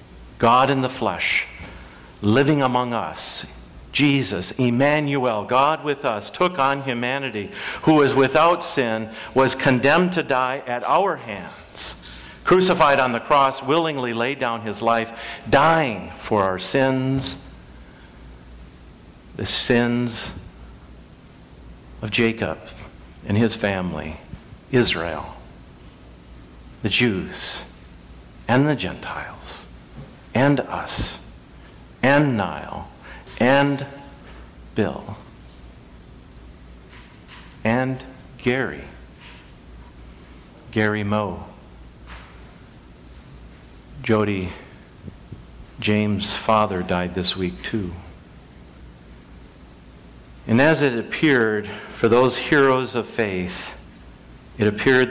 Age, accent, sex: 50-69, American, male